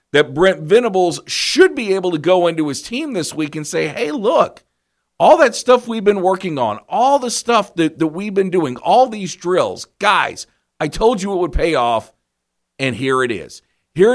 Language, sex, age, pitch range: English, male, 50-69, 120-185 Hz